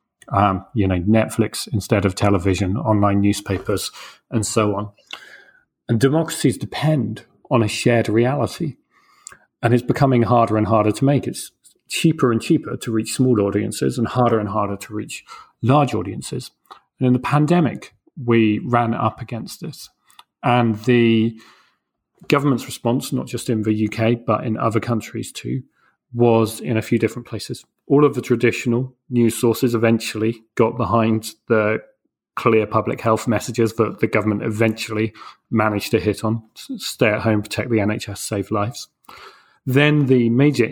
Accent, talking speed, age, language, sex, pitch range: British, 155 wpm, 40-59, English, male, 110-125 Hz